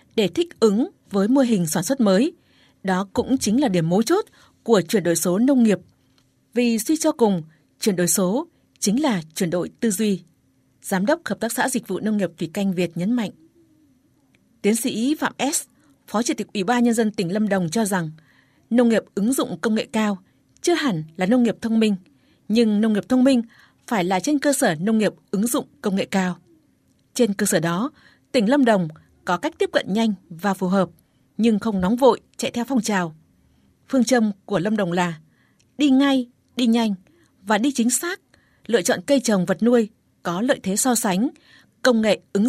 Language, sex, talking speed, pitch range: Vietnamese, female, 210 wpm, 185-250 Hz